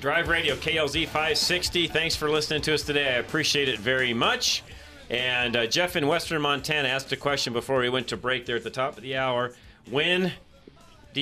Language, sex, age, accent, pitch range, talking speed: English, male, 40-59, American, 105-145 Hz, 205 wpm